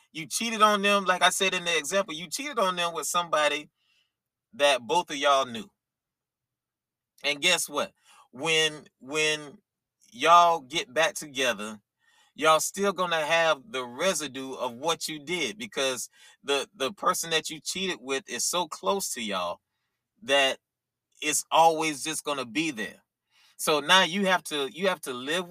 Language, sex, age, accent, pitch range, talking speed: English, male, 30-49, American, 140-185 Hz, 165 wpm